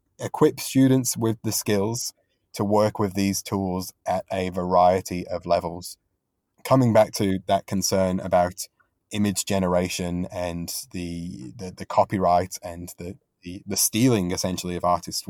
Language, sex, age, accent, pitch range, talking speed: English, male, 20-39, British, 90-110 Hz, 140 wpm